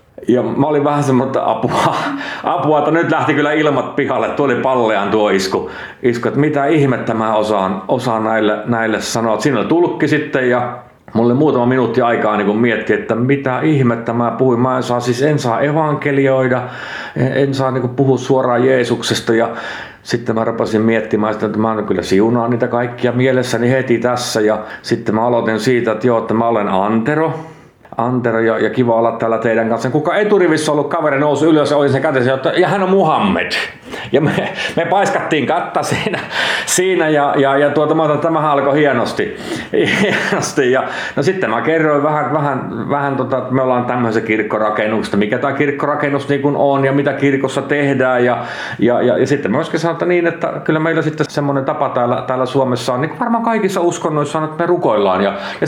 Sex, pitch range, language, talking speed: male, 115-150 Hz, Finnish, 190 wpm